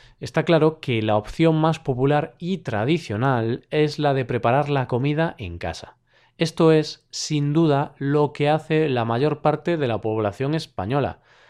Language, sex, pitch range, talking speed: Spanish, male, 120-155 Hz, 160 wpm